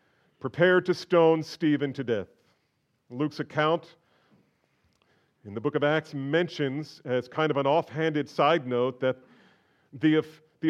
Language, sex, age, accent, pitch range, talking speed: English, male, 40-59, American, 125-165 Hz, 135 wpm